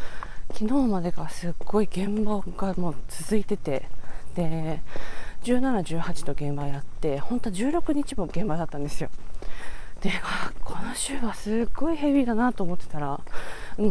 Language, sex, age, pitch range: Japanese, female, 20-39, 160-245 Hz